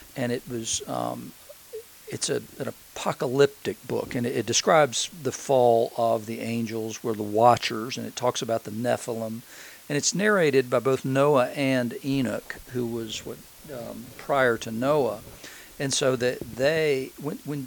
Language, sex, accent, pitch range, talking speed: English, male, American, 115-135 Hz, 165 wpm